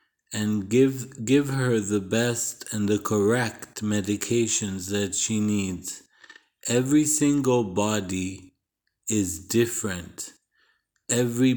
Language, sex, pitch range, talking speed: English, male, 100-120 Hz, 100 wpm